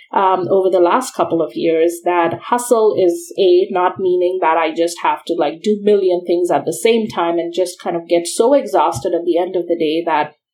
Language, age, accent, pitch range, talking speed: English, 30-49, Indian, 175-250 Hz, 230 wpm